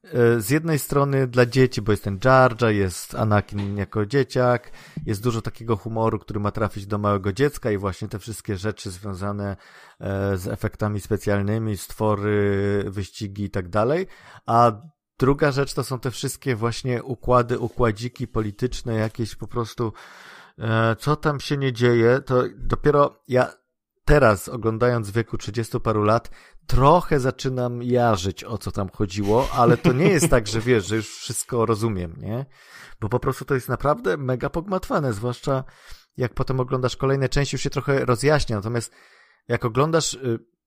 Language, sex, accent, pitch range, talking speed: Polish, male, native, 105-130 Hz, 155 wpm